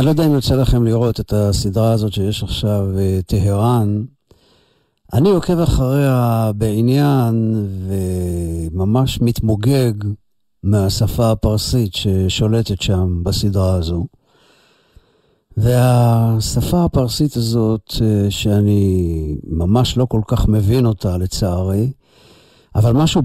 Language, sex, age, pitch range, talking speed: Hebrew, male, 50-69, 95-120 Hz, 100 wpm